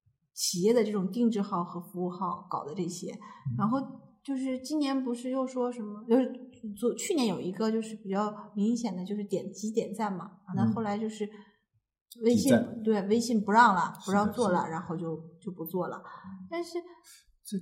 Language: Chinese